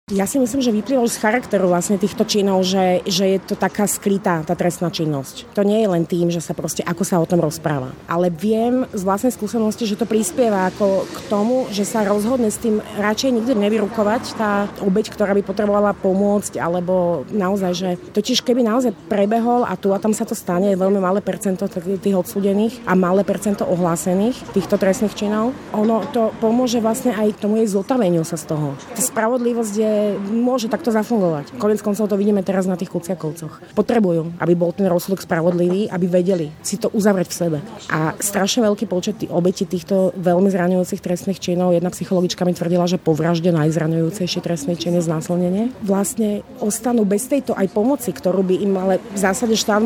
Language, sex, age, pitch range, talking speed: Slovak, female, 30-49, 180-220 Hz, 190 wpm